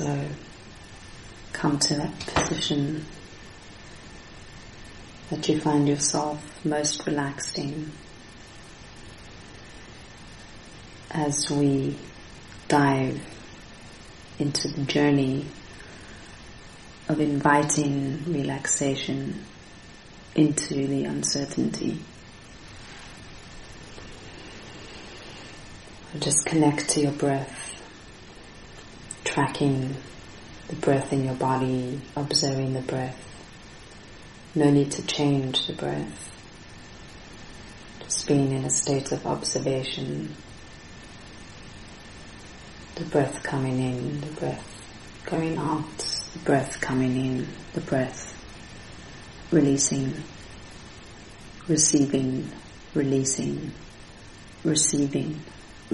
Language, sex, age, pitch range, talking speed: German, female, 30-49, 110-145 Hz, 75 wpm